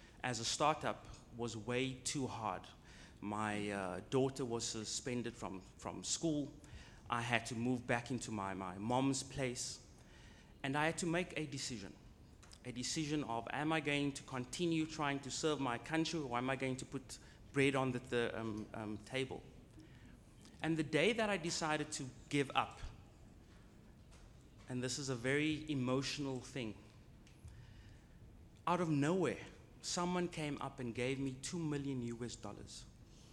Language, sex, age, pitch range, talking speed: English, male, 30-49, 115-145 Hz, 155 wpm